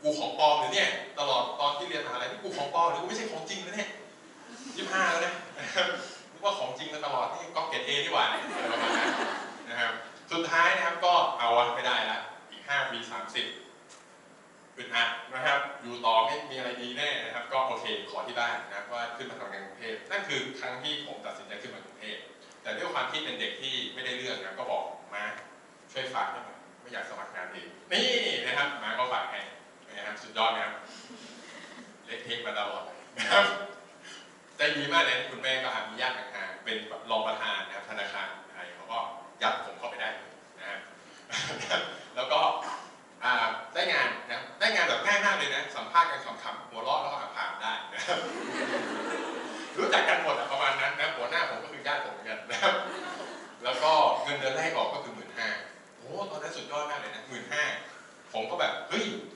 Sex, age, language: male, 20-39, English